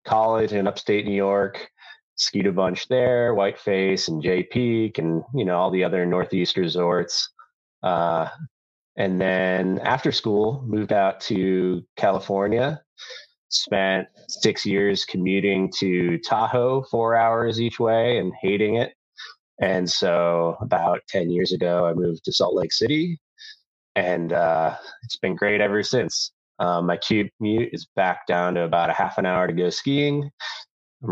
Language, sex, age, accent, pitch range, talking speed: English, male, 20-39, American, 90-110 Hz, 150 wpm